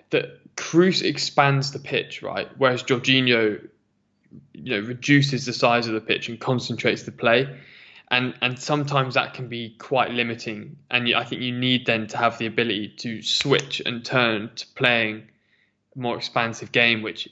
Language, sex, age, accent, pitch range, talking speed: English, male, 10-29, British, 110-130 Hz, 170 wpm